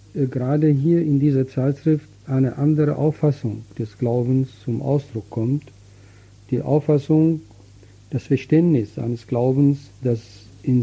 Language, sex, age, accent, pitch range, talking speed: German, male, 50-69, German, 100-140 Hz, 115 wpm